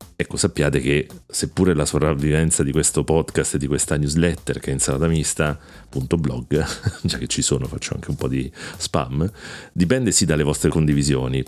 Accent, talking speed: native, 185 wpm